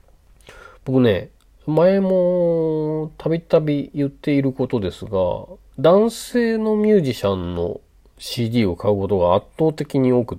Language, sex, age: Japanese, male, 40-59